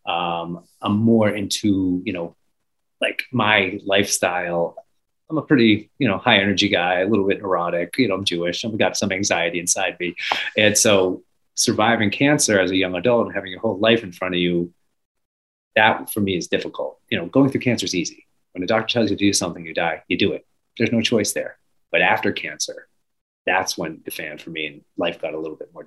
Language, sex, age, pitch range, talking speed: English, male, 30-49, 90-115 Hz, 215 wpm